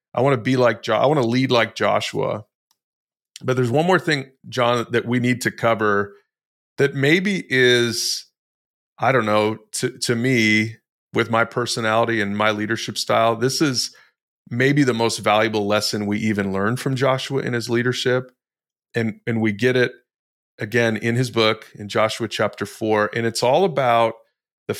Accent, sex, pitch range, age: American, male, 115-135 Hz, 30-49